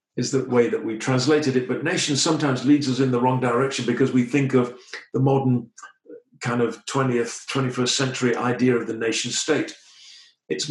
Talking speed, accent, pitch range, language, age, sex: 185 wpm, British, 120-150 Hz, English, 50-69, male